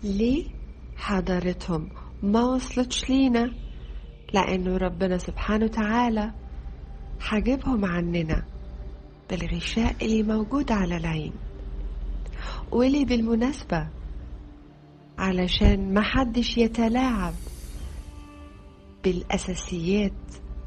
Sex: female